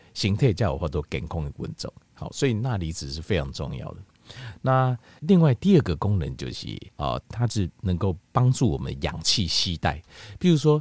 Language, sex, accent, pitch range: Chinese, male, native, 85-120 Hz